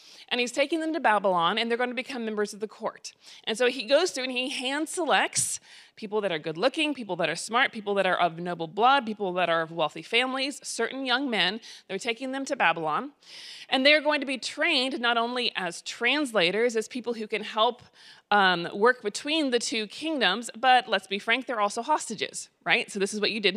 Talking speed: 220 wpm